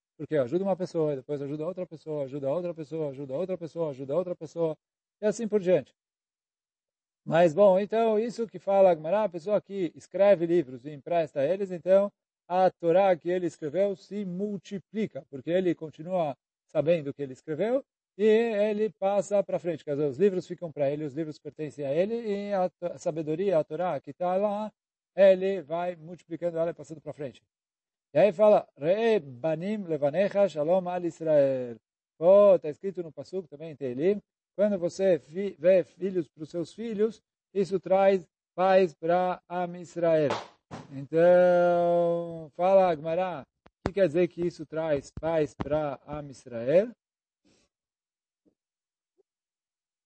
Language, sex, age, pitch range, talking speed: Portuguese, male, 40-59, 155-195 Hz, 155 wpm